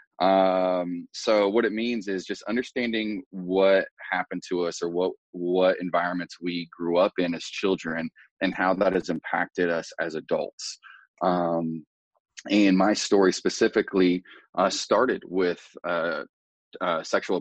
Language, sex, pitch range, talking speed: English, male, 80-95 Hz, 140 wpm